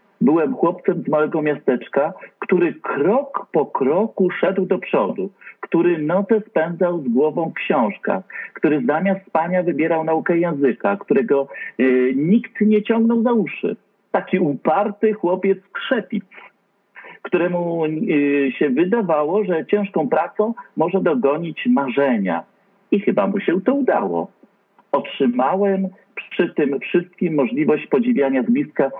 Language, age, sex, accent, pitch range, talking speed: Polish, 50-69, male, native, 165-210 Hz, 115 wpm